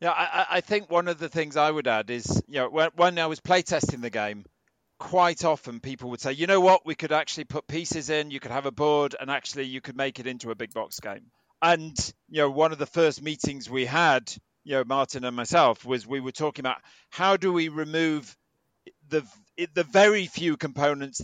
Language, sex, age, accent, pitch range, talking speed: English, male, 40-59, British, 125-160 Hz, 225 wpm